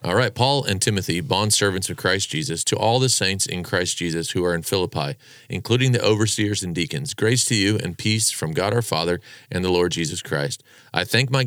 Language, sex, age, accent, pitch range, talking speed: English, male, 40-59, American, 95-120 Hz, 225 wpm